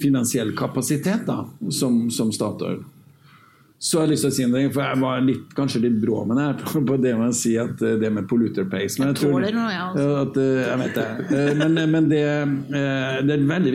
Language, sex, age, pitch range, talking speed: English, male, 60-79, 120-145 Hz, 185 wpm